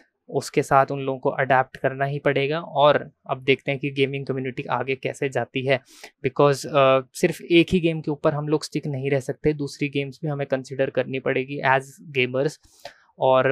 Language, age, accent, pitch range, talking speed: Hindi, 20-39, native, 135-150 Hz, 195 wpm